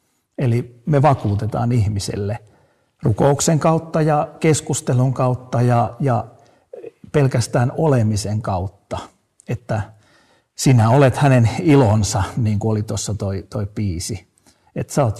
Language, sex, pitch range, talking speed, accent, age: Finnish, male, 100-130 Hz, 115 wpm, native, 50-69